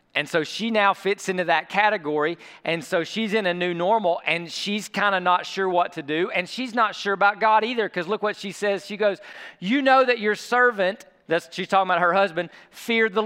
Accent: American